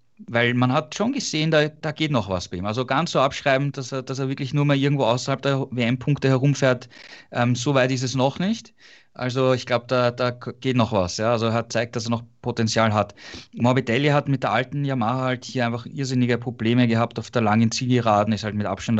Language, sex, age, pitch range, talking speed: German, male, 20-39, 115-130 Hz, 230 wpm